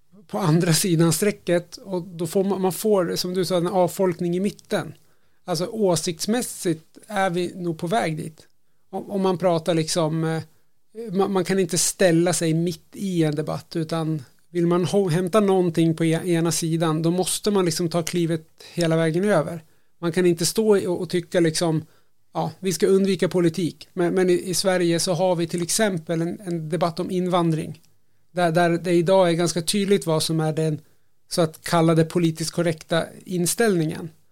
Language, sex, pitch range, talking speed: Swedish, male, 165-190 Hz, 170 wpm